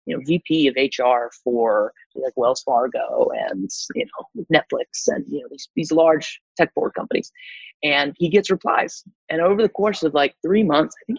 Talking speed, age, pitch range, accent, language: 195 wpm, 30-49, 145-210 Hz, American, English